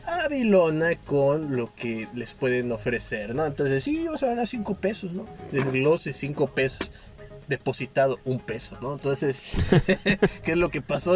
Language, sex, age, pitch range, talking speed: Spanish, male, 30-49, 125-160 Hz, 155 wpm